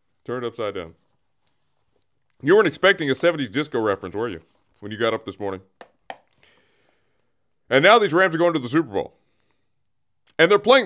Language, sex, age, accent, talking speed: English, male, 30-49, American, 175 wpm